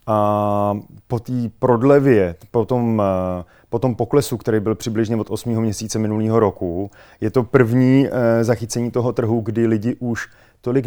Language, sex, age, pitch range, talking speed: Czech, male, 30-49, 105-125 Hz, 150 wpm